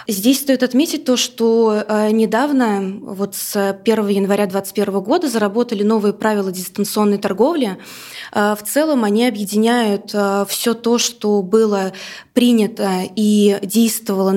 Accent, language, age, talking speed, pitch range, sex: native, Russian, 20-39, 115 wpm, 200-235 Hz, female